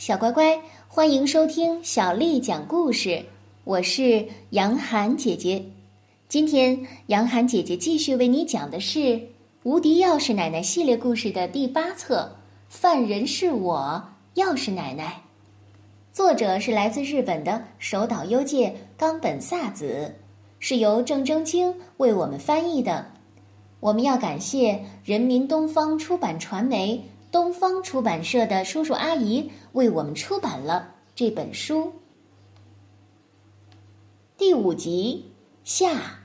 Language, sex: Chinese, female